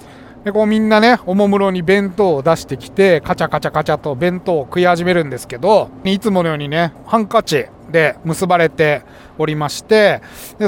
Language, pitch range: Japanese, 145-205 Hz